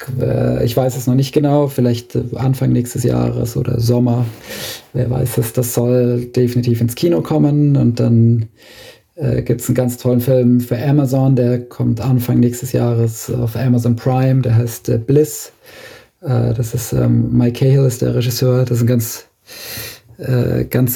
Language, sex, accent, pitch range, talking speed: German, male, German, 115-125 Hz, 165 wpm